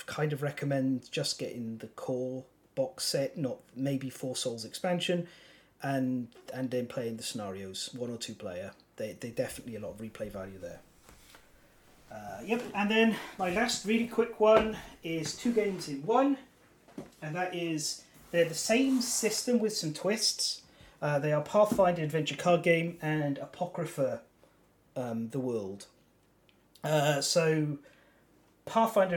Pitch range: 140-200 Hz